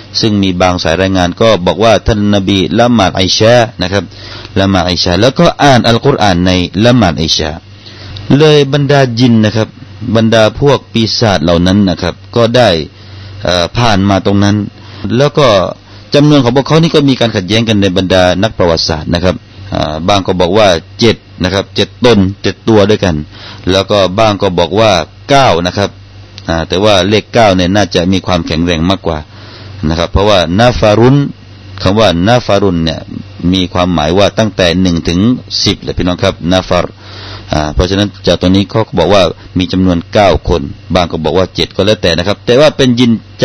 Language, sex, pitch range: Thai, male, 90-110 Hz